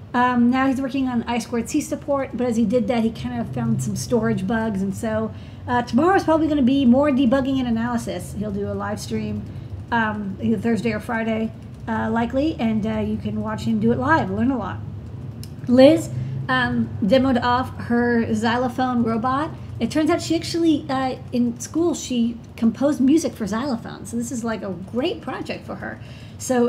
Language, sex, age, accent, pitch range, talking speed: English, female, 40-59, American, 205-255 Hz, 190 wpm